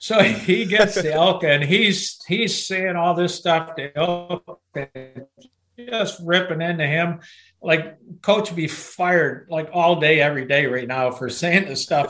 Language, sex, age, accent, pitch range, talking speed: English, male, 60-79, American, 155-205 Hz, 170 wpm